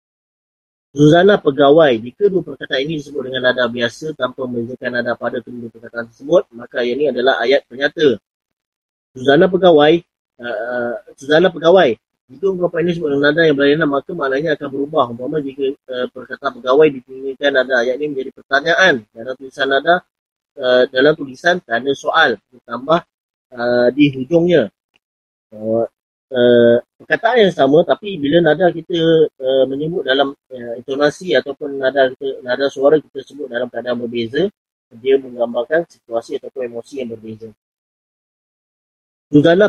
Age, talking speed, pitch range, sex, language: 30-49, 145 wpm, 125-155 Hz, male, Malay